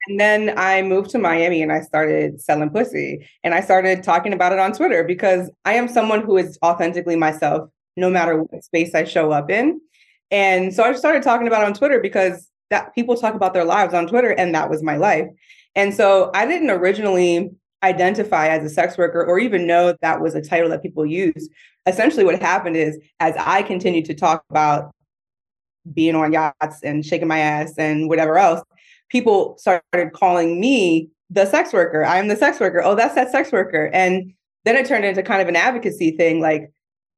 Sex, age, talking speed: female, 20-39, 200 wpm